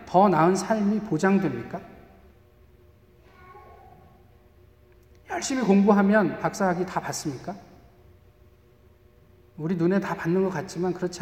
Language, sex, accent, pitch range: Korean, male, native, 155-200 Hz